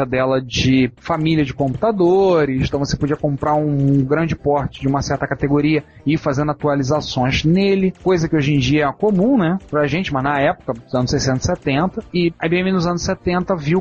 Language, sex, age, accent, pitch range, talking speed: Portuguese, male, 30-49, Brazilian, 140-175 Hz, 200 wpm